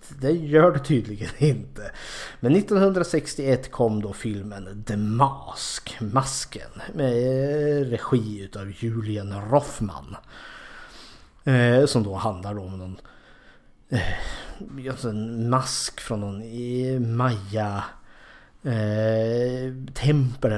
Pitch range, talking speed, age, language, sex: 105-125 Hz, 85 wpm, 30-49, Swedish, male